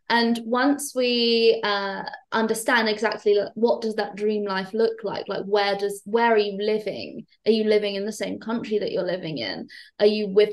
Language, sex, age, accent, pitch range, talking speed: English, female, 20-39, British, 210-245 Hz, 200 wpm